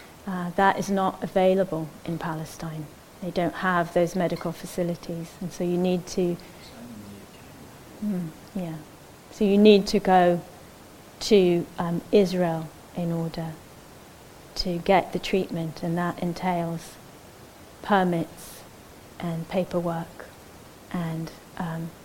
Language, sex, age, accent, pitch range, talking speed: English, female, 30-49, British, 170-190 Hz, 110 wpm